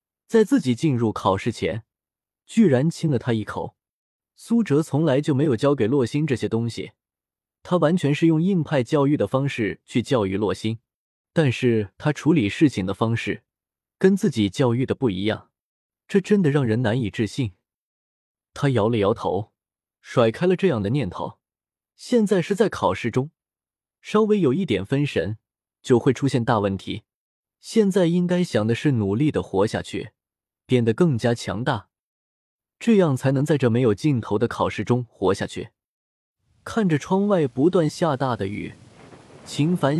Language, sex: Chinese, male